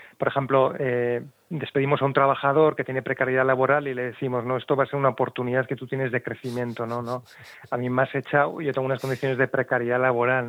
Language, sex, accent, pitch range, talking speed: Spanish, male, Spanish, 125-140 Hz, 225 wpm